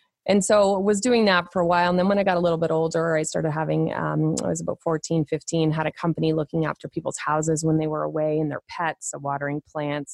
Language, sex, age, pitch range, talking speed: English, female, 20-39, 155-175 Hz, 260 wpm